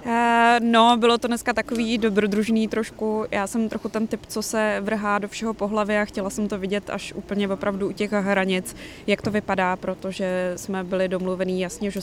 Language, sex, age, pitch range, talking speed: Czech, female, 20-39, 185-210 Hz, 190 wpm